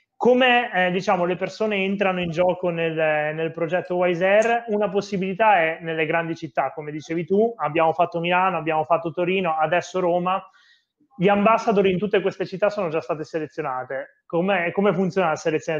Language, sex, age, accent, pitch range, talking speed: Italian, male, 30-49, native, 160-190 Hz, 170 wpm